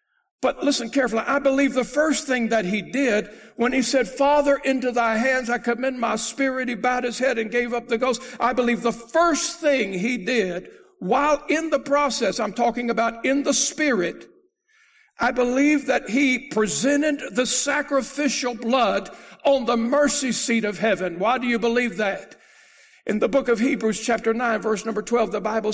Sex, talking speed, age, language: male, 185 wpm, 60-79, English